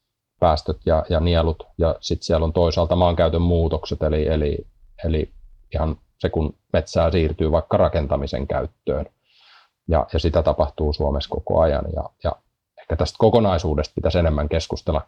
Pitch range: 80-95 Hz